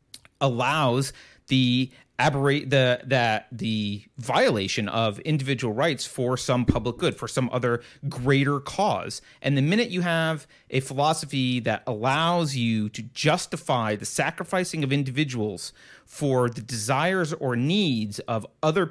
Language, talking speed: English, 135 wpm